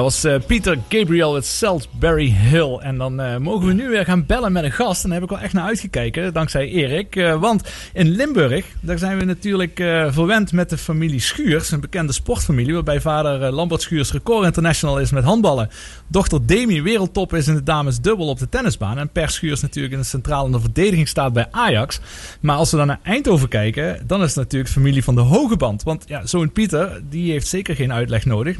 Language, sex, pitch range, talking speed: Dutch, male, 135-195 Hz, 220 wpm